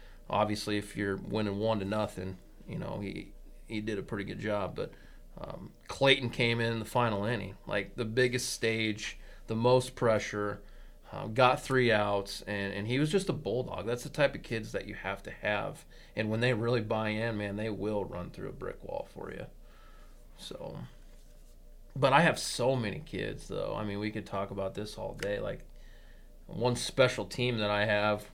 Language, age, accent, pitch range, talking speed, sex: English, 20-39, American, 100-120 Hz, 195 wpm, male